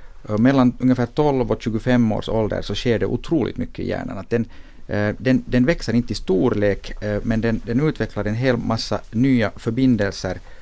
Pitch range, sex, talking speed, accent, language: 100-125 Hz, male, 175 wpm, native, Finnish